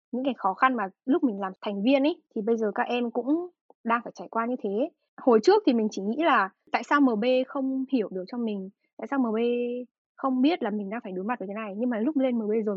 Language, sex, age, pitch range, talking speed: Vietnamese, female, 10-29, 220-280 Hz, 275 wpm